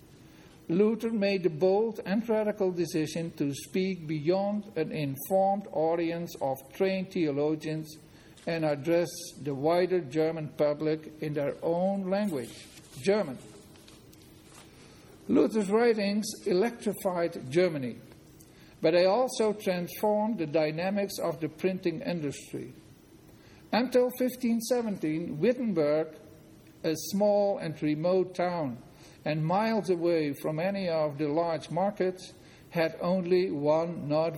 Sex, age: male, 50-69